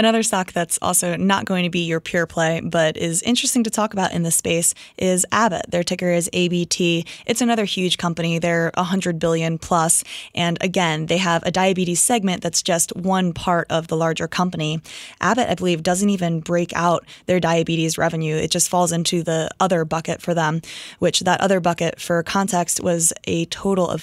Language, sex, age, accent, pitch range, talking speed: English, female, 20-39, American, 165-195 Hz, 195 wpm